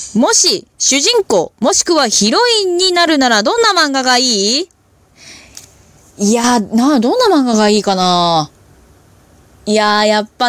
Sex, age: female, 20-39